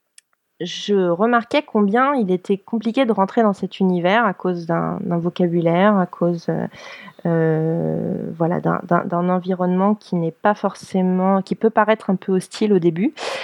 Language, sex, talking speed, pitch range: French, female, 160 wpm, 175-210 Hz